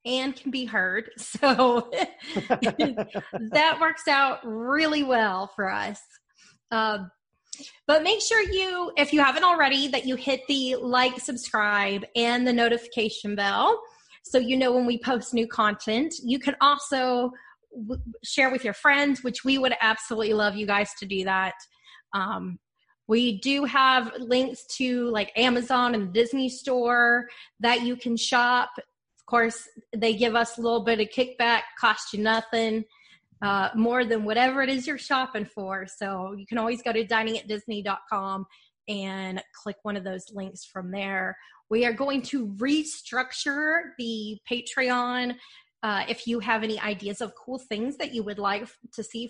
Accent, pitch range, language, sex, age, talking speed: American, 215-265 Hz, English, female, 20-39, 160 wpm